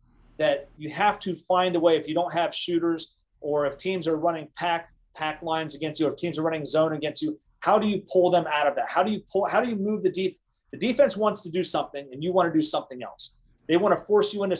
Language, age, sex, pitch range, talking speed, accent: English, 30-49, male, 150-185 Hz, 275 wpm, American